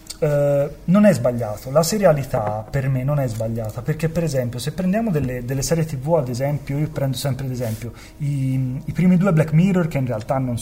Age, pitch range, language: 30-49, 120-155 Hz, Italian